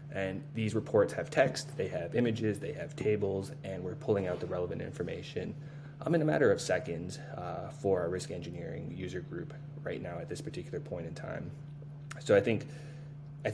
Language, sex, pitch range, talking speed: English, male, 105-145 Hz, 190 wpm